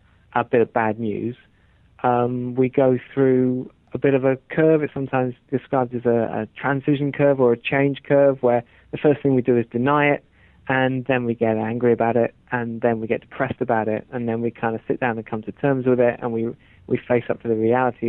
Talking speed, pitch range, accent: 230 wpm, 115-135 Hz, British